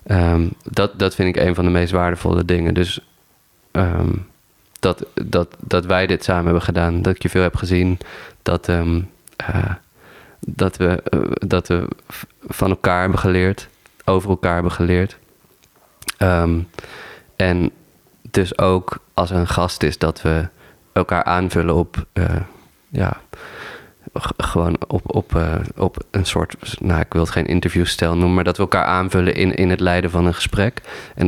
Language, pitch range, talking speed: Dutch, 85-95 Hz, 165 wpm